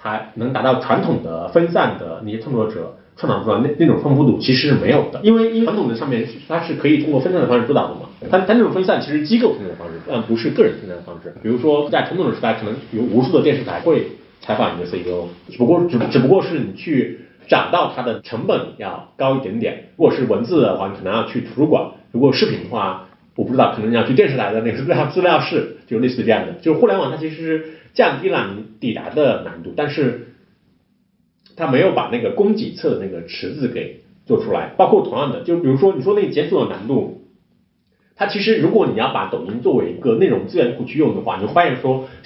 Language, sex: Chinese, male